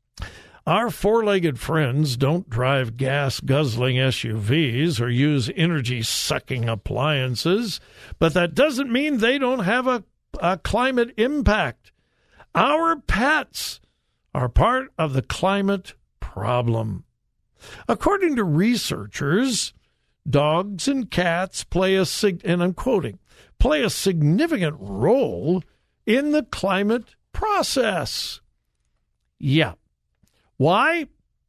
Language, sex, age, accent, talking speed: English, male, 60-79, American, 100 wpm